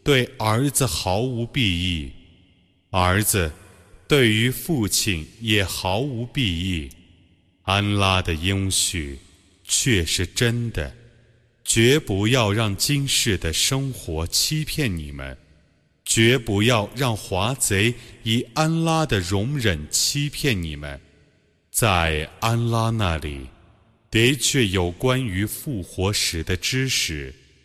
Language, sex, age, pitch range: Arabic, male, 30-49, 90-120 Hz